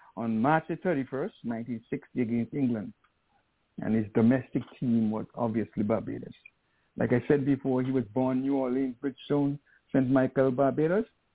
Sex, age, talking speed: male, 60-79, 135 wpm